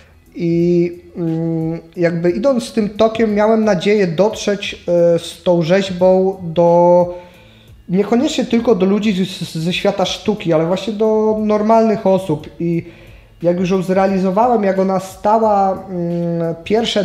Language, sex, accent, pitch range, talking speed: Polish, male, native, 175-215 Hz, 120 wpm